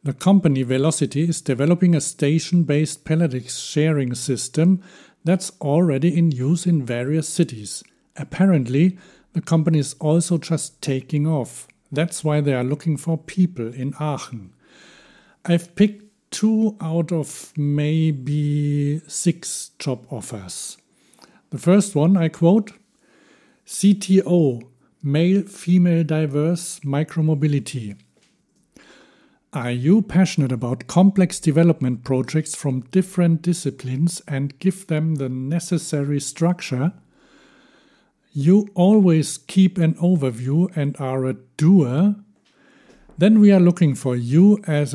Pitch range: 135-175 Hz